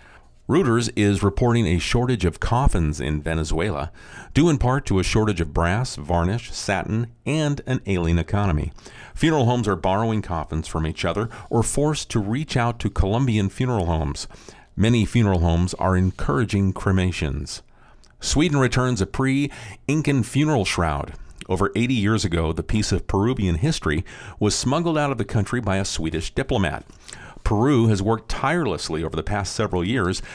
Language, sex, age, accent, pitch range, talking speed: English, male, 50-69, American, 90-125 Hz, 160 wpm